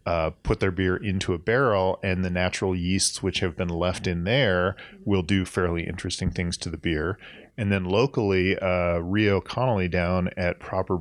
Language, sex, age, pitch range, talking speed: English, male, 30-49, 90-100 Hz, 185 wpm